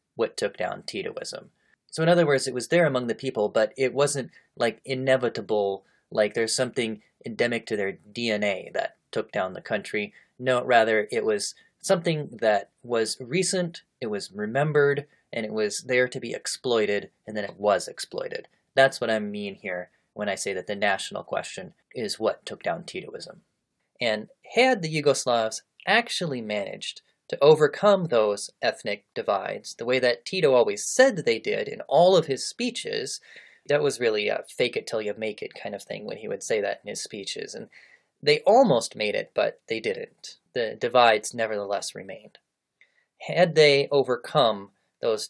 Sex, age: male, 20-39